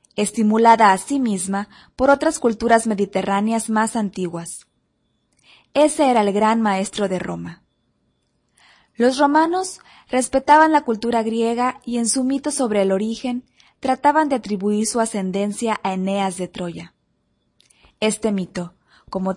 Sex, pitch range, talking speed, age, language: female, 200-245 Hz, 130 wpm, 20-39, Italian